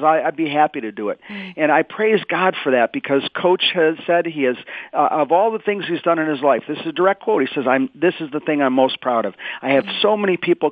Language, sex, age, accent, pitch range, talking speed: English, male, 40-59, American, 125-175 Hz, 275 wpm